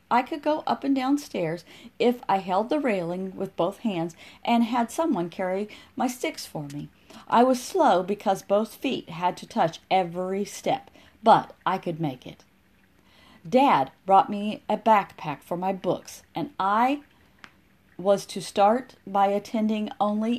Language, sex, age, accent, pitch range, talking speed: English, female, 40-59, American, 185-245 Hz, 160 wpm